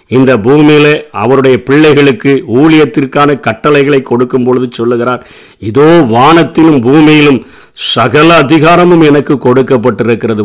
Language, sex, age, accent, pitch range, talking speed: Tamil, male, 50-69, native, 135-165 Hz, 75 wpm